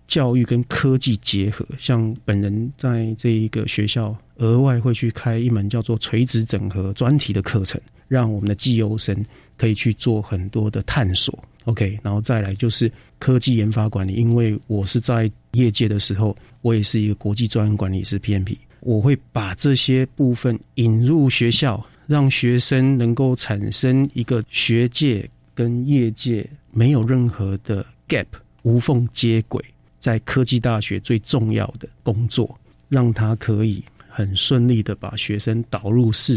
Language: Chinese